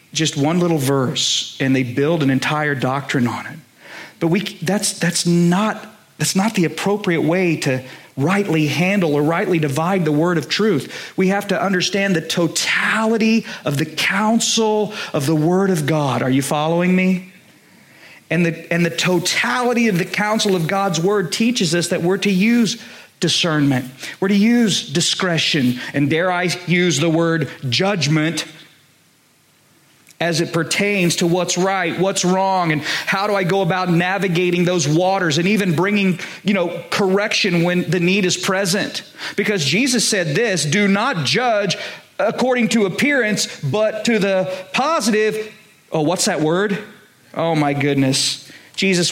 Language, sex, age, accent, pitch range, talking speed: English, male, 40-59, American, 155-200 Hz, 160 wpm